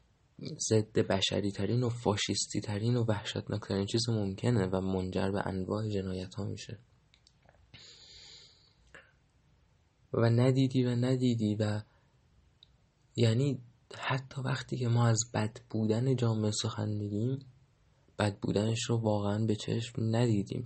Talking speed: 120 wpm